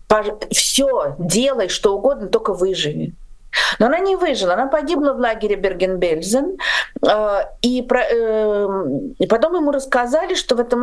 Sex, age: female, 50-69